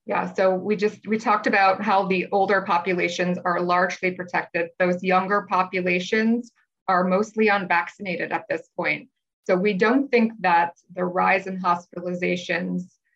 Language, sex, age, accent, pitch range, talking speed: English, female, 20-39, American, 180-195 Hz, 145 wpm